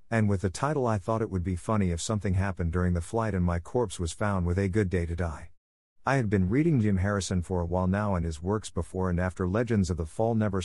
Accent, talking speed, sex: American, 270 wpm, male